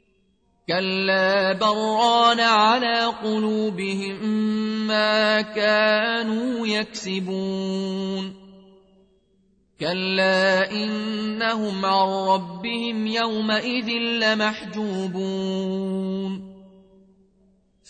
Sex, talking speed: male, 45 wpm